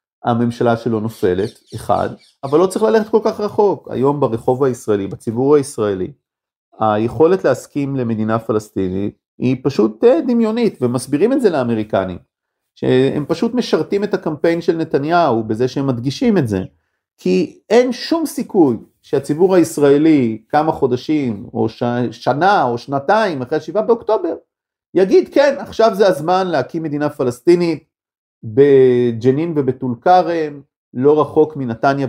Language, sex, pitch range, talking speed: Hebrew, male, 125-195 Hz, 130 wpm